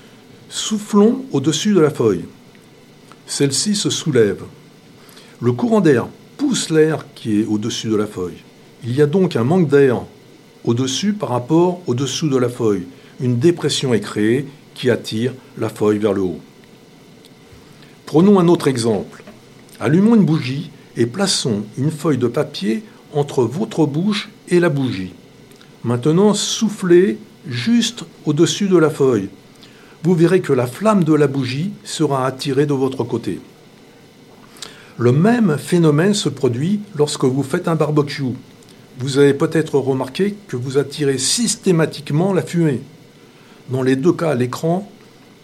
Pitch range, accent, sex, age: 130-175 Hz, French, male, 60-79